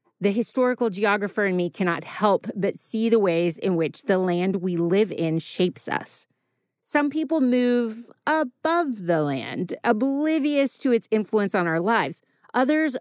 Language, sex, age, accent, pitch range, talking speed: English, female, 30-49, American, 185-255 Hz, 155 wpm